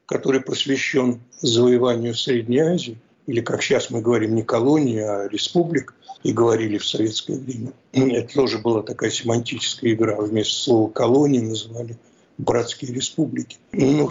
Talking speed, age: 135 wpm, 60-79